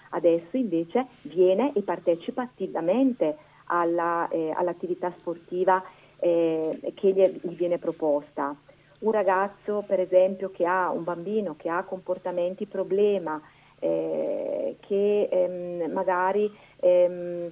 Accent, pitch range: native, 165-200 Hz